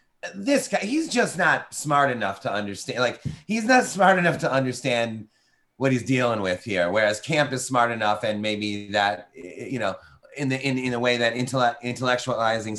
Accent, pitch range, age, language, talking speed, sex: American, 115-150 Hz, 30-49, English, 185 wpm, male